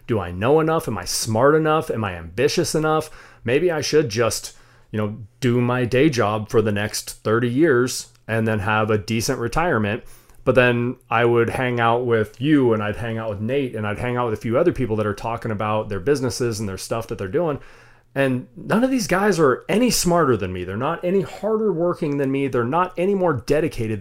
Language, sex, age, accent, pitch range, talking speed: English, male, 30-49, American, 110-140 Hz, 225 wpm